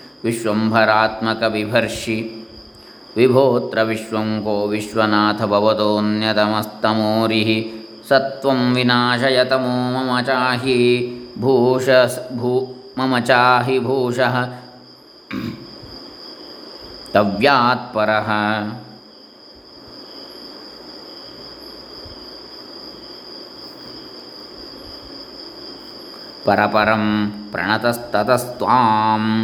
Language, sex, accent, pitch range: Kannada, male, native, 110-130 Hz